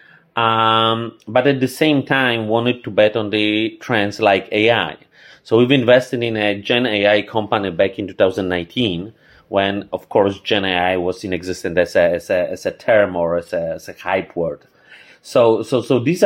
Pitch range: 100-130 Hz